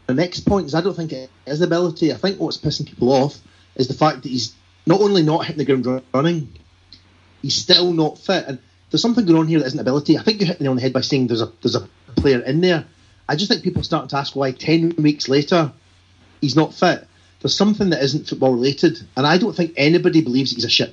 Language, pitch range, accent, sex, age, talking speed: English, 125-160 Hz, British, male, 30-49, 250 wpm